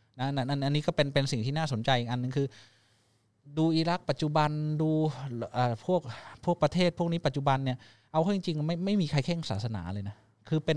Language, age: Thai, 20-39